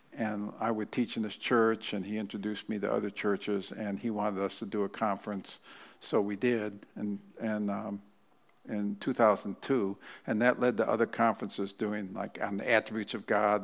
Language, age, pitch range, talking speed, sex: English, 50-69, 100-115 Hz, 190 wpm, male